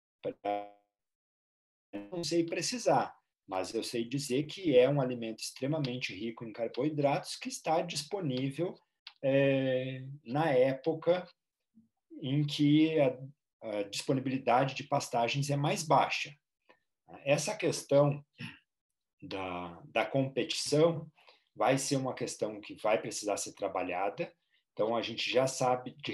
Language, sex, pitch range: Portuguese, male, 115-160 Hz